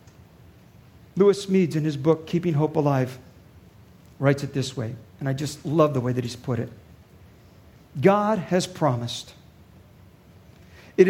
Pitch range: 145-210 Hz